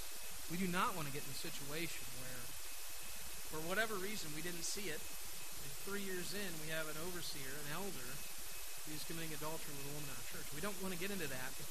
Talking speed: 230 wpm